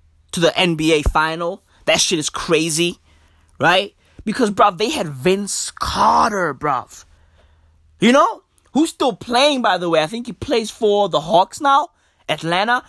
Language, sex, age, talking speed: English, male, 20-39, 155 wpm